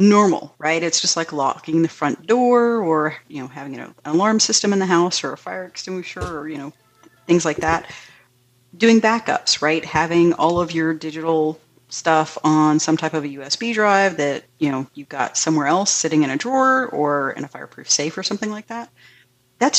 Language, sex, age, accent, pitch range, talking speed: English, female, 30-49, American, 145-170 Hz, 200 wpm